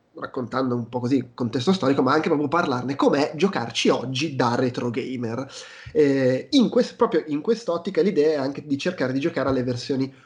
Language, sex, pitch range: Italian, male, 125-150 Hz